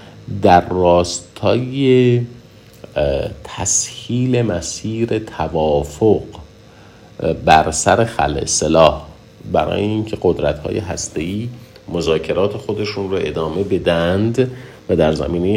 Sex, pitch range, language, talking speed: male, 80-105 Hz, Persian, 80 wpm